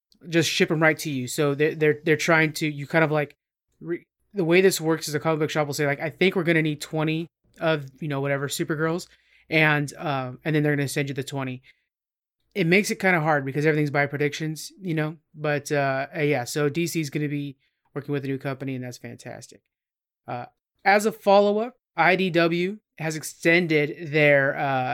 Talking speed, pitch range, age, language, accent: 215 wpm, 145-170 Hz, 20-39, English, American